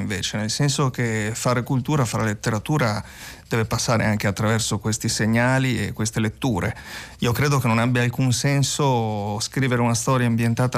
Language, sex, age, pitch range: Italian, male, 40-59, 110-140 Hz